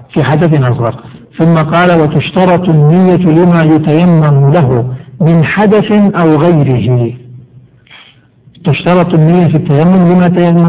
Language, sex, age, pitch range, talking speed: Arabic, male, 60-79, 140-180 Hz, 110 wpm